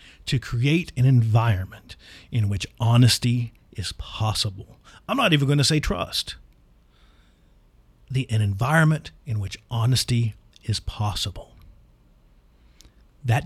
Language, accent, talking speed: English, American, 110 wpm